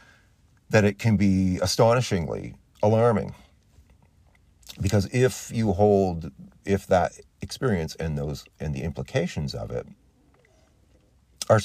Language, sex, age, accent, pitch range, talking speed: English, male, 40-59, American, 75-105 Hz, 110 wpm